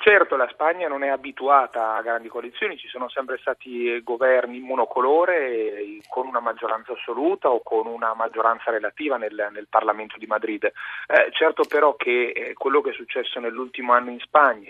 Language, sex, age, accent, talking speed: Italian, male, 30-49, native, 170 wpm